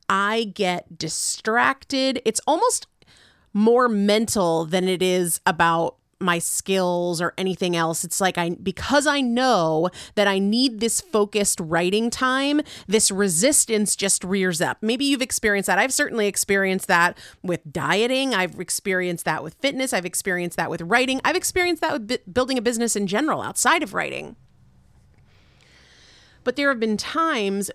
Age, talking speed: 30-49, 155 wpm